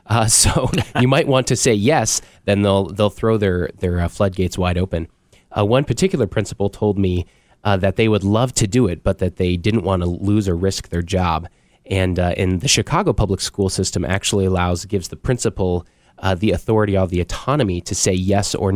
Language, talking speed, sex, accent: English, 210 wpm, male, American